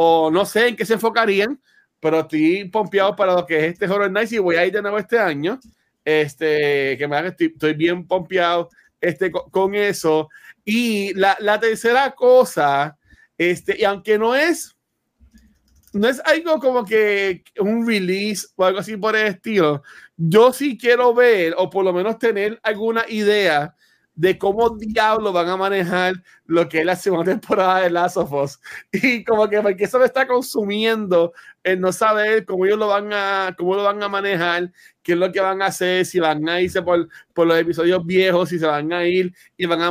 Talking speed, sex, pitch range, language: 195 wpm, male, 175-225 Hz, Spanish